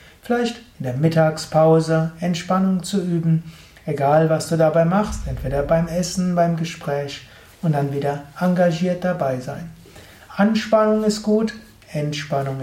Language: German